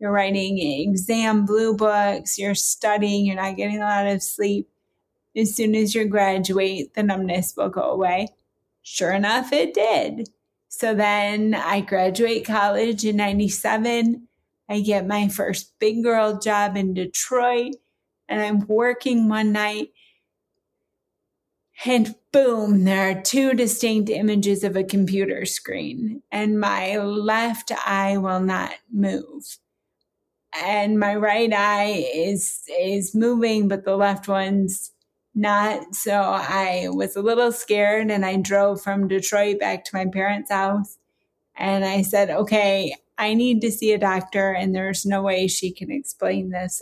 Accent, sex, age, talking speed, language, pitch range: American, female, 30-49, 145 wpm, English, 195-215 Hz